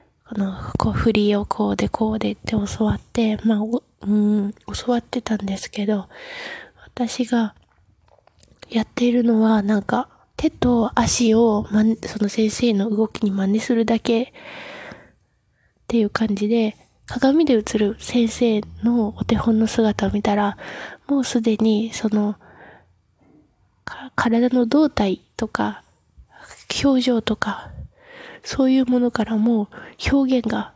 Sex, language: female, Japanese